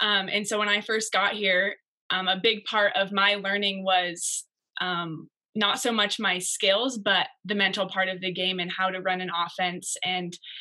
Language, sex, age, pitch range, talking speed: English, female, 20-39, 185-210 Hz, 205 wpm